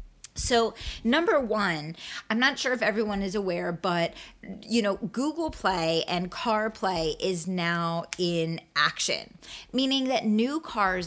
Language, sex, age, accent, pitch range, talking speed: English, female, 20-39, American, 165-210 Hz, 135 wpm